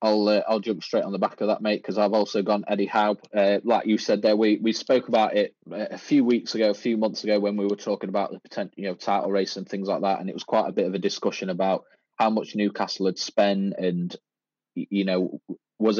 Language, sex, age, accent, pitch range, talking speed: English, male, 20-39, British, 95-105 Hz, 260 wpm